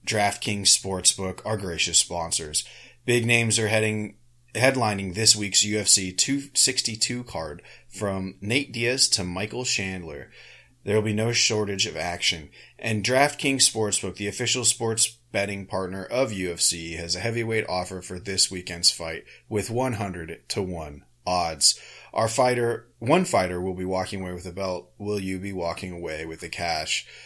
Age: 30-49